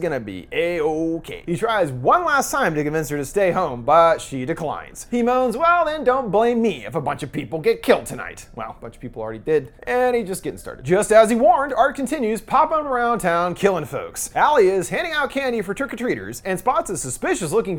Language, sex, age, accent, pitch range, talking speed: English, male, 30-49, American, 165-265 Hz, 230 wpm